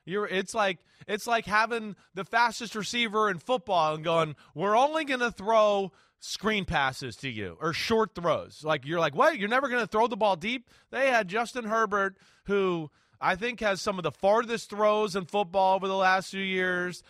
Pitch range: 155-230 Hz